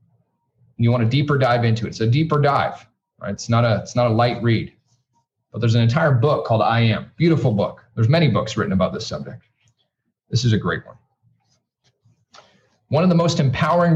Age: 40-59